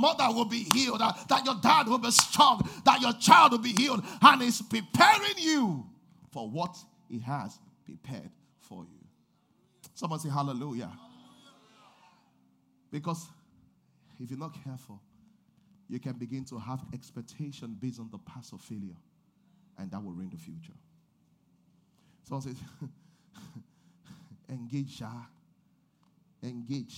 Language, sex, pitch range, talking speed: English, male, 115-190 Hz, 130 wpm